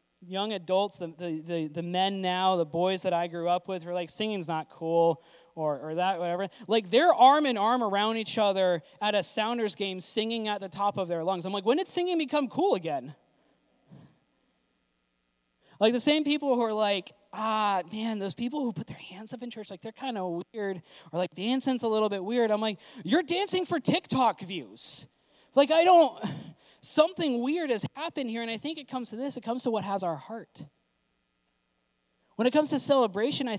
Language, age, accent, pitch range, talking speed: English, 20-39, American, 170-240 Hz, 200 wpm